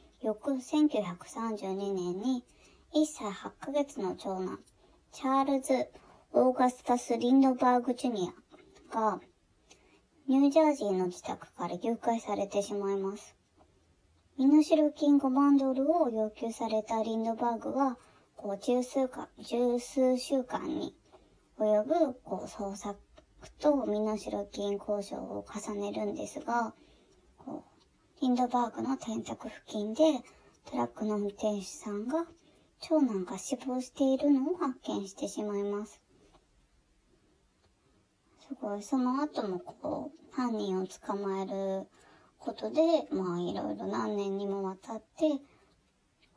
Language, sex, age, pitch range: Japanese, male, 20-39, 200-275 Hz